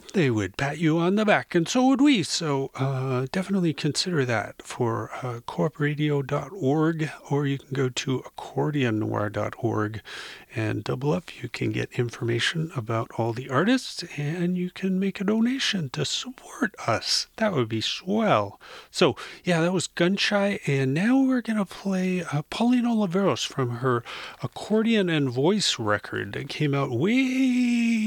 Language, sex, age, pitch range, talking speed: English, male, 40-59, 130-180 Hz, 155 wpm